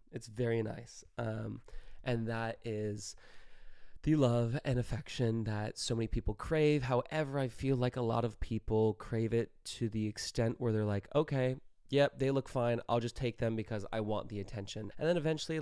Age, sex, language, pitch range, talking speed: 20-39, male, English, 105-125 Hz, 190 wpm